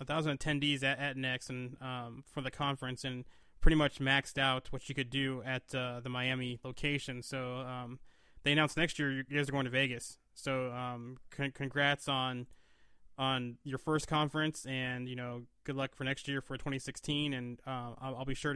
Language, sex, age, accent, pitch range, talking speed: English, male, 20-39, American, 125-140 Hz, 195 wpm